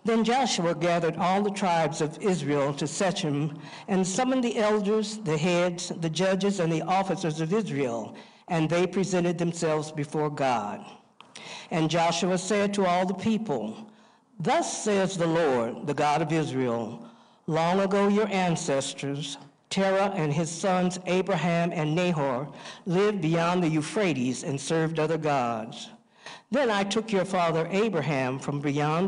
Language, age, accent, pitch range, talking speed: English, 60-79, American, 150-190 Hz, 145 wpm